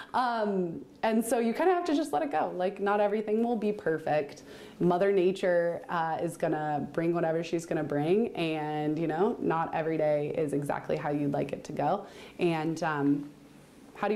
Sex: female